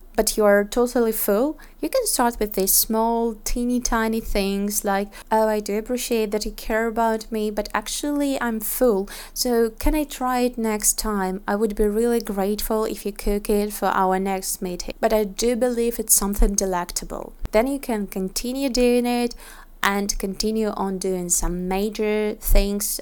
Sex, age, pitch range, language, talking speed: female, 20-39, 195-230 Hz, Russian, 175 wpm